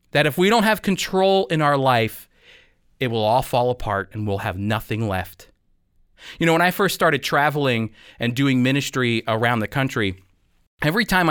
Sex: male